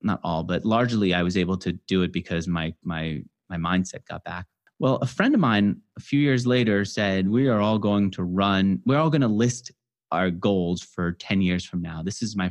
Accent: American